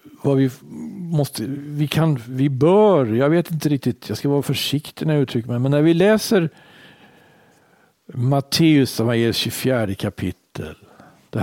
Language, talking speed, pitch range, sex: Swedish, 150 wpm, 115-155 Hz, male